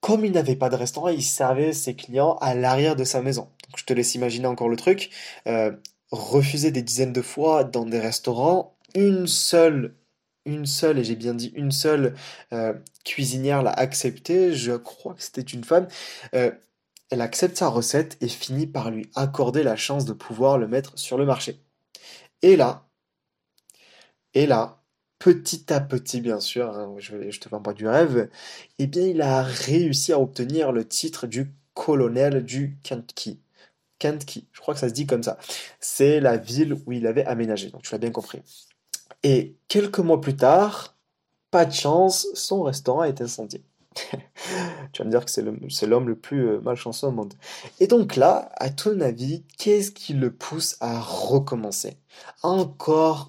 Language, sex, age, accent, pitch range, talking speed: French, male, 20-39, French, 125-160 Hz, 180 wpm